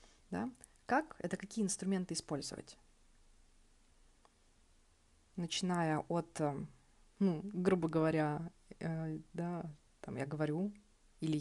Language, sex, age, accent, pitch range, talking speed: Russian, female, 20-39, native, 150-190 Hz, 70 wpm